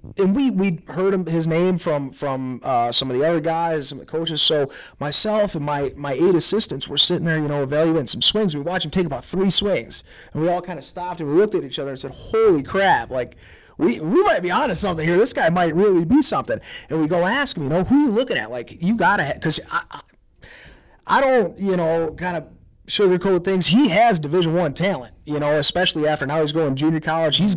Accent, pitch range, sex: American, 150-185 Hz, male